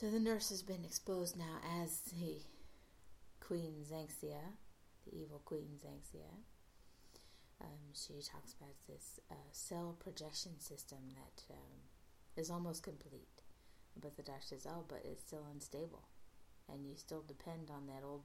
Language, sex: English, female